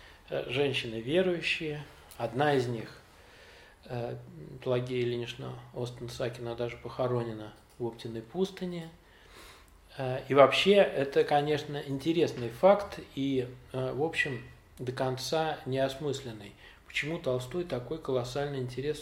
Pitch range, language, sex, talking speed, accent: 120-140 Hz, Russian, male, 105 wpm, native